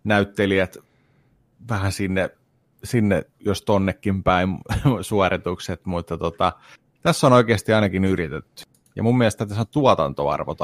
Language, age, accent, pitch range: Finnish, 30-49, native, 95-125 Hz